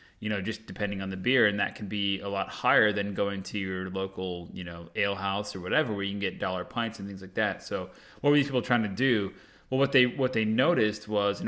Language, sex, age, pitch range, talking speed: English, male, 20-39, 95-110 Hz, 265 wpm